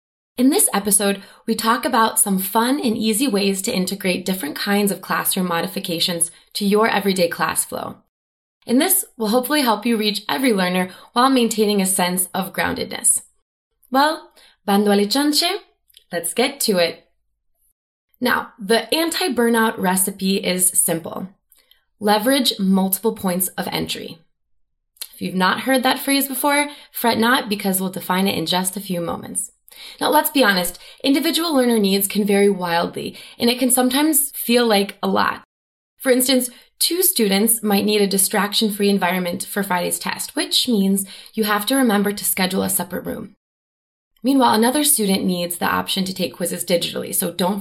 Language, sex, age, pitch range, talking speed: English, female, 20-39, 185-255 Hz, 160 wpm